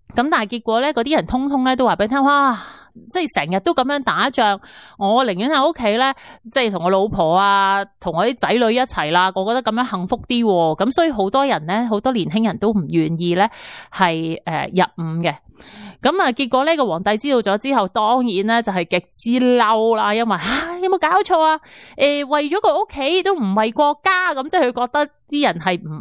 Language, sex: Chinese, female